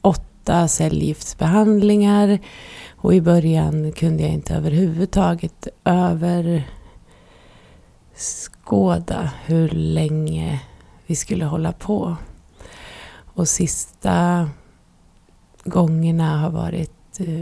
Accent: native